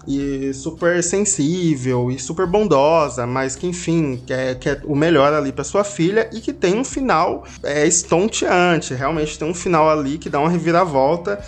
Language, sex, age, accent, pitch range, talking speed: Portuguese, male, 20-39, Brazilian, 145-200 Hz, 175 wpm